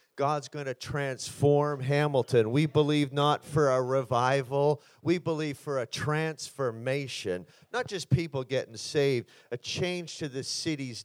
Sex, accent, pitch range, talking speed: male, American, 125-150 Hz, 140 wpm